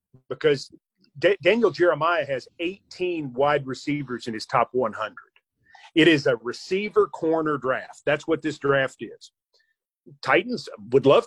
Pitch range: 140-215 Hz